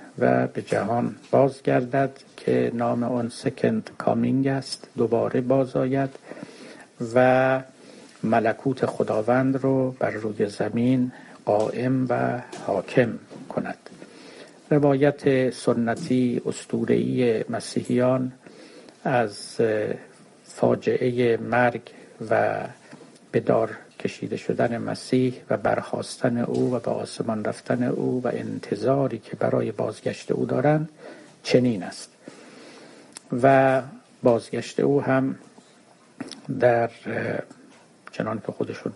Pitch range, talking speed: 120-130 Hz, 90 wpm